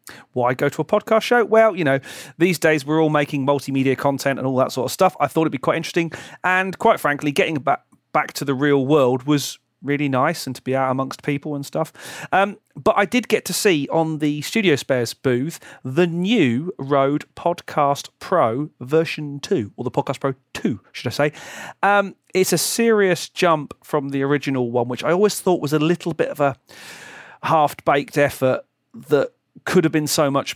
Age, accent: 40-59, British